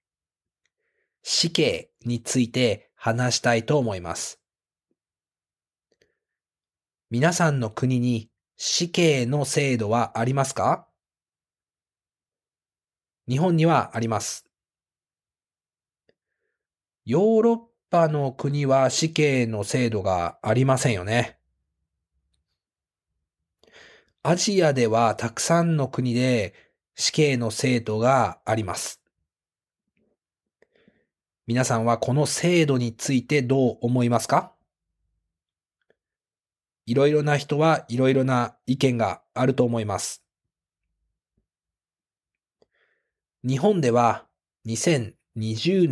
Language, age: Japanese, 40-59